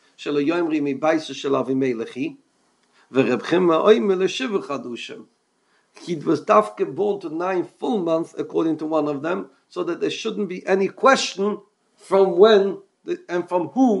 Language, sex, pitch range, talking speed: English, male, 150-225 Hz, 105 wpm